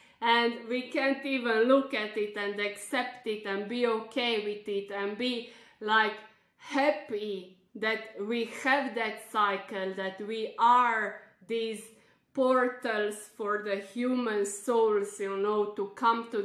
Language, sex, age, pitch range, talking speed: English, female, 20-39, 205-235 Hz, 140 wpm